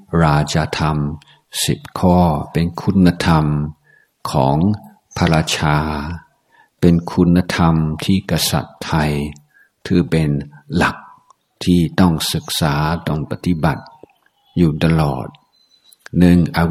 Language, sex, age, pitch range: Thai, male, 60-79, 75-85 Hz